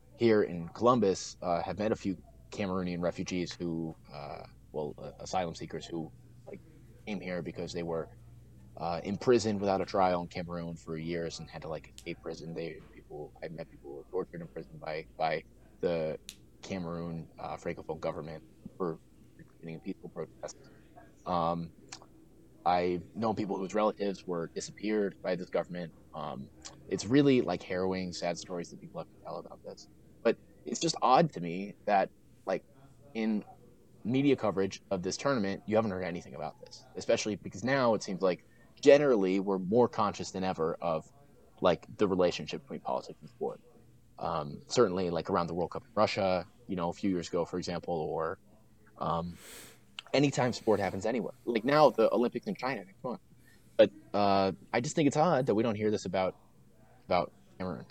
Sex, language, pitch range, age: male, English, 85-105 Hz, 30-49